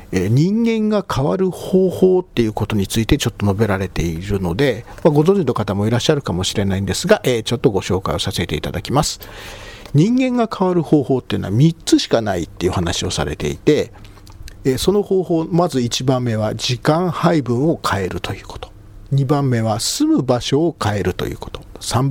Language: Japanese